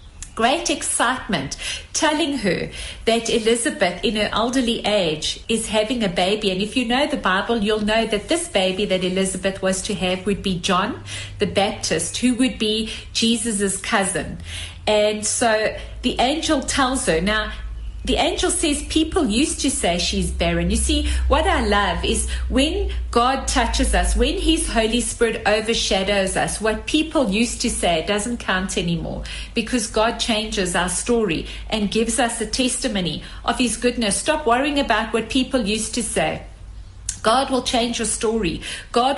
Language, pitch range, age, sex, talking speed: English, 190-245 Hz, 40-59, female, 165 wpm